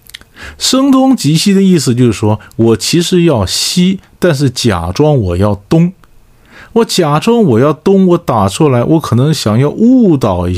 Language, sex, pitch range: Chinese, male, 105-175 Hz